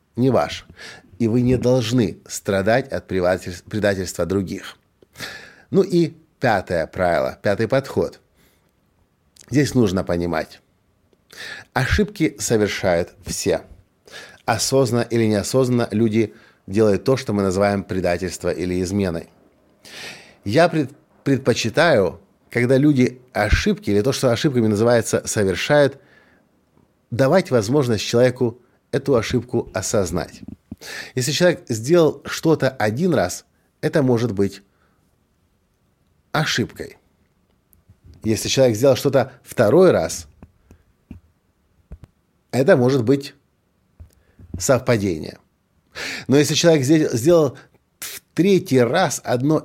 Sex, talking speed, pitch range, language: male, 95 wpm, 95-135 Hz, Russian